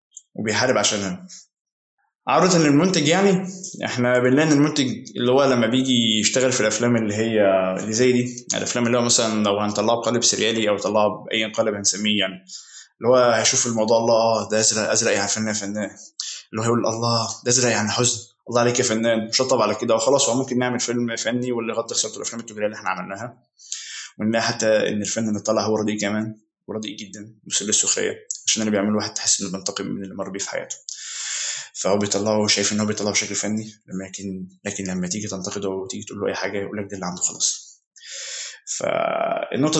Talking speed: 185 wpm